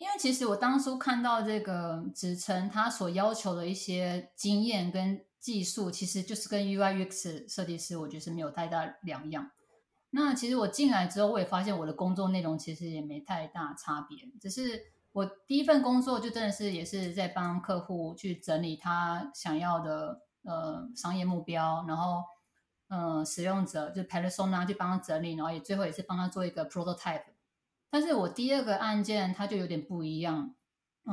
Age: 20-39